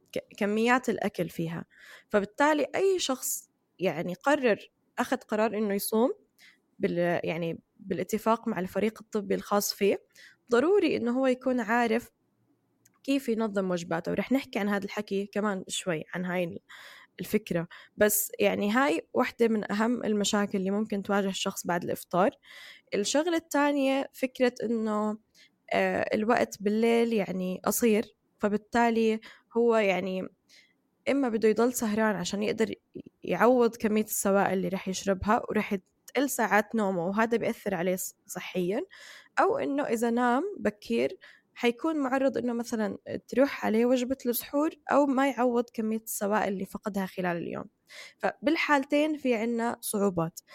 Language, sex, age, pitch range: Arabic, female, 10-29, 200-250 Hz